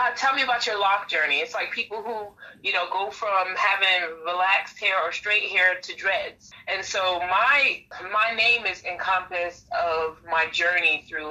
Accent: American